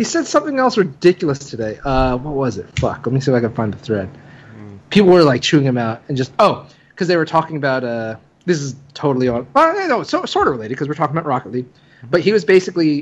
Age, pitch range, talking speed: 30-49, 125-170 Hz, 265 wpm